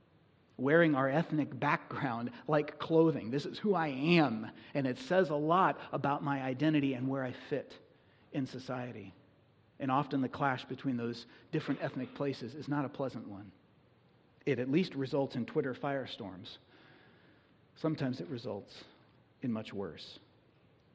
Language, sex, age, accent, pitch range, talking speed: English, male, 40-59, American, 125-155 Hz, 150 wpm